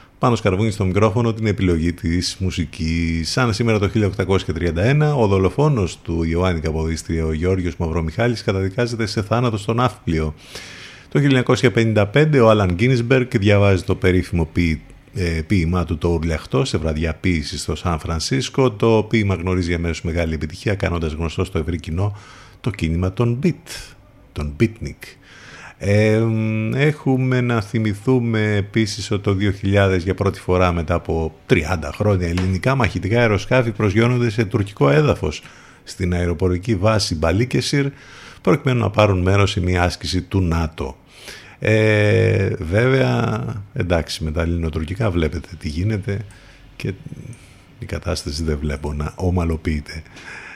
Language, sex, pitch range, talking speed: Greek, male, 85-115 Hz, 135 wpm